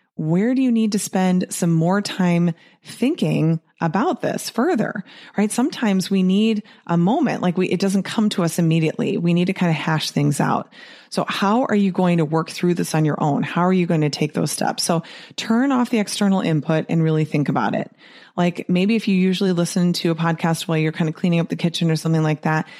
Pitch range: 170-225 Hz